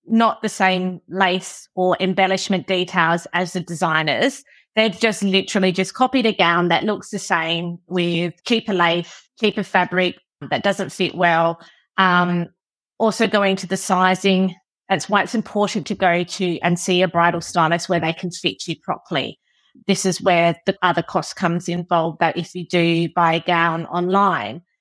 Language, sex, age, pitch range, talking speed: English, female, 30-49, 170-200 Hz, 170 wpm